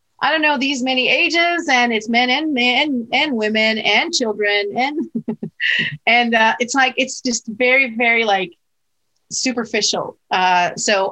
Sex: female